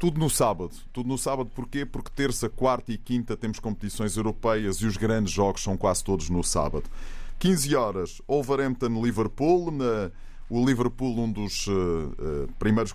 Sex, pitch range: male, 100-120 Hz